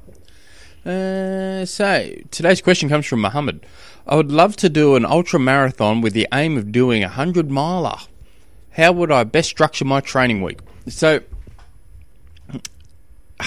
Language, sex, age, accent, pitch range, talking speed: English, male, 20-39, Australian, 95-125 Hz, 145 wpm